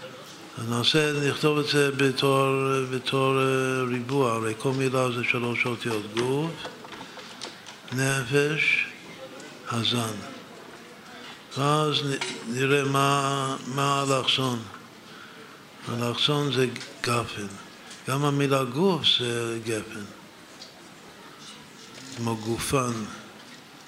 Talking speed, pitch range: 75 wpm, 115-140 Hz